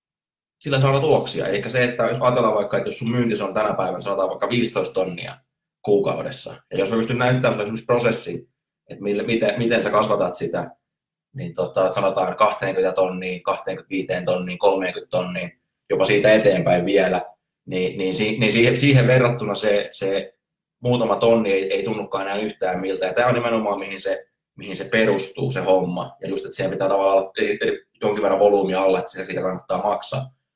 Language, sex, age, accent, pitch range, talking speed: Finnish, male, 20-39, native, 95-135 Hz, 180 wpm